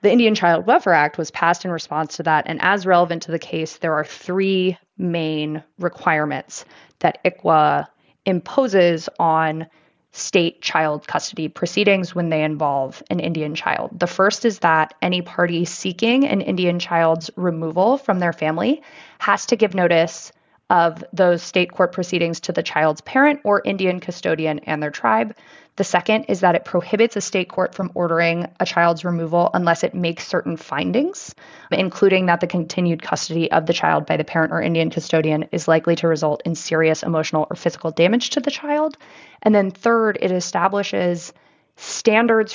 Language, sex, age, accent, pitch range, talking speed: English, female, 20-39, American, 160-195 Hz, 170 wpm